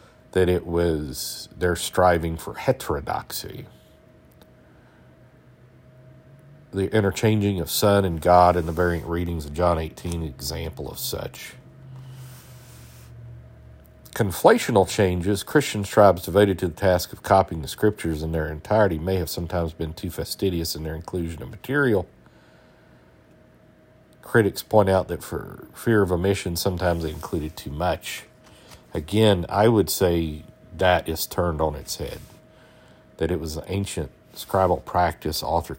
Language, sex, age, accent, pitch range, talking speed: English, male, 50-69, American, 80-100 Hz, 135 wpm